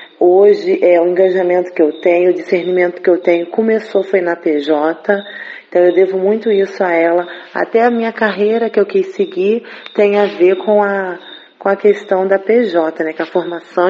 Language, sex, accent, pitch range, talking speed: Portuguese, female, Brazilian, 175-205 Hz, 195 wpm